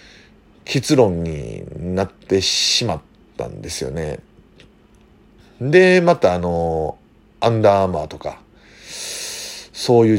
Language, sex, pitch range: Japanese, male, 90-135 Hz